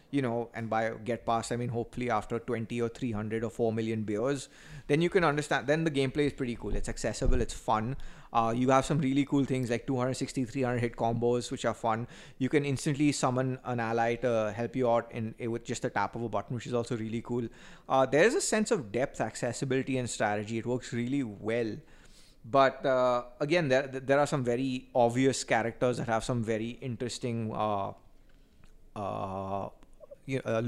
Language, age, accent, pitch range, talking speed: English, 30-49, Indian, 115-135 Hz, 200 wpm